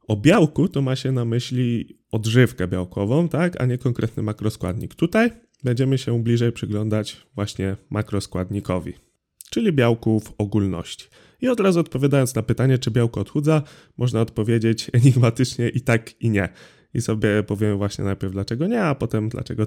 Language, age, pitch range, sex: Polish, 20-39, 105-130 Hz, male